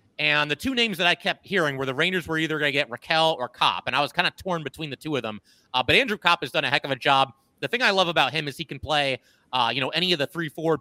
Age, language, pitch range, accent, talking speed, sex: 30-49, English, 135-165 Hz, American, 330 wpm, male